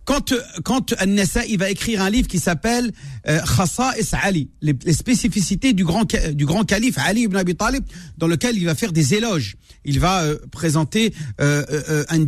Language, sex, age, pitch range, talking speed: French, male, 40-59, 160-230 Hz, 180 wpm